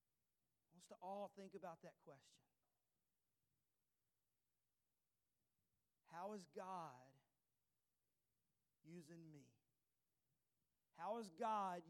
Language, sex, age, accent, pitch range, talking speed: English, male, 40-59, American, 130-190 Hz, 70 wpm